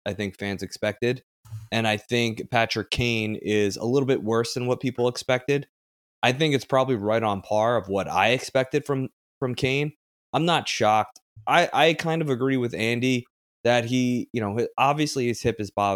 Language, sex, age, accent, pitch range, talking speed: English, male, 20-39, American, 105-125 Hz, 190 wpm